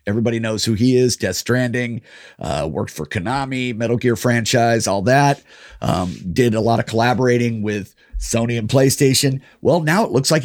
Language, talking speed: English, 180 wpm